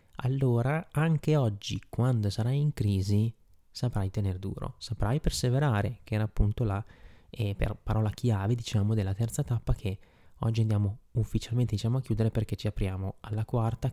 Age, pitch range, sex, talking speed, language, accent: 20-39, 100-120 Hz, male, 155 wpm, Italian, native